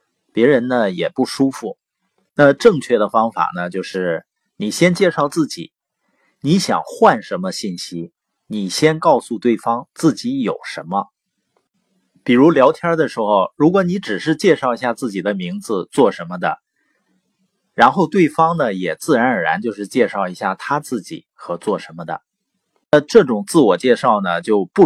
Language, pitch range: Chinese, 120-195 Hz